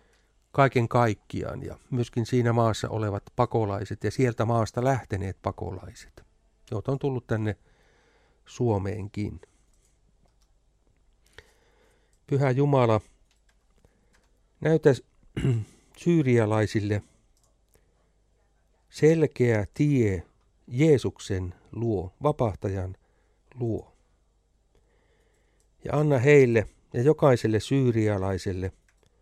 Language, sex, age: Finnish, male, 60-79